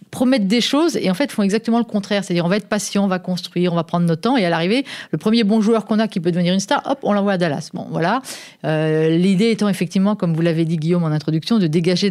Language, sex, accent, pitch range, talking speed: French, female, French, 160-205 Hz, 280 wpm